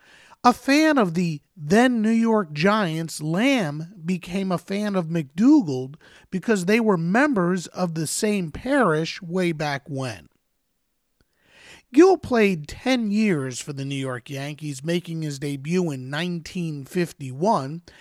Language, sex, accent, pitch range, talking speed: English, male, American, 155-220 Hz, 125 wpm